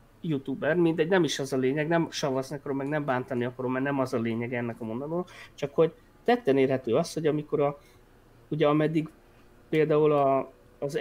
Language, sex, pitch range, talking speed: Hungarian, male, 135-175 Hz, 190 wpm